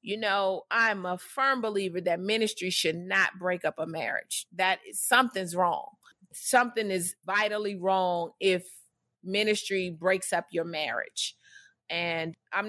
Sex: female